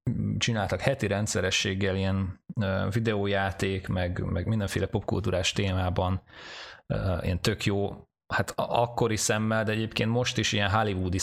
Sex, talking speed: male, 120 wpm